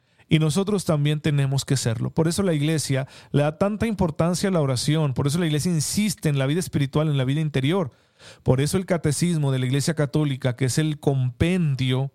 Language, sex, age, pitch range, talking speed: Spanish, male, 40-59, 135-165 Hz, 205 wpm